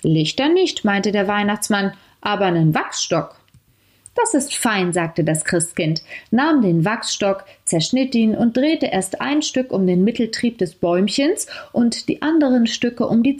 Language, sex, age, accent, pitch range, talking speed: German, female, 30-49, German, 175-245 Hz, 155 wpm